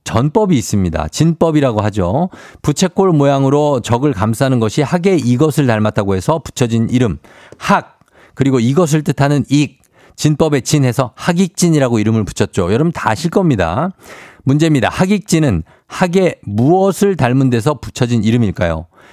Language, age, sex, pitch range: Korean, 50-69, male, 110-160 Hz